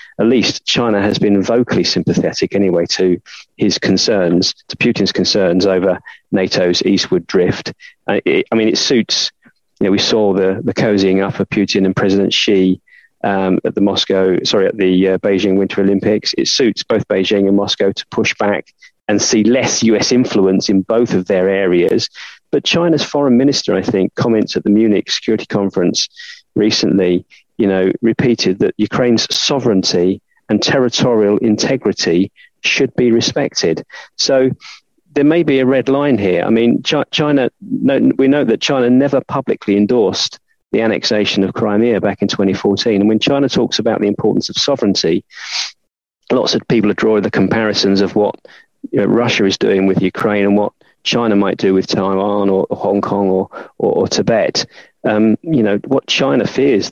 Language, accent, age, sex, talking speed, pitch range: English, British, 40-59, male, 170 wpm, 95-120 Hz